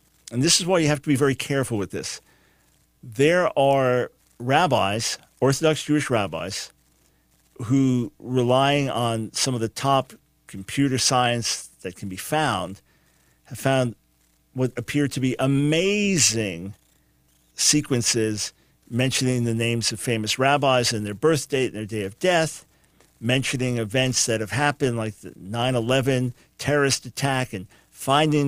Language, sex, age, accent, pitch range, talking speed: English, male, 50-69, American, 115-140 Hz, 140 wpm